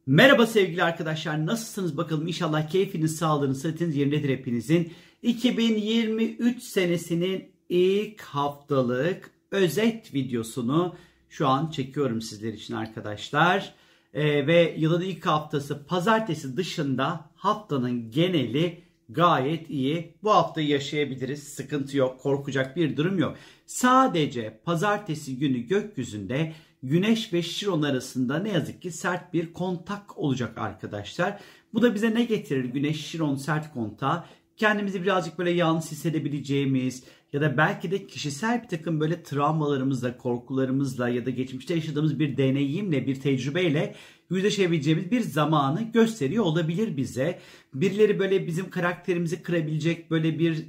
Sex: male